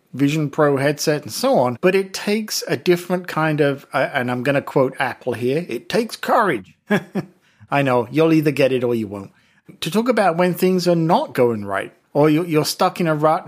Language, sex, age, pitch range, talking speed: English, male, 50-69, 135-175 Hz, 210 wpm